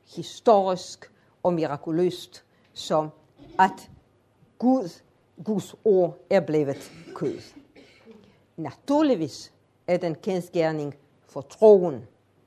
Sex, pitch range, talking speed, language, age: female, 140-205 Hz, 80 wpm, Danish, 50-69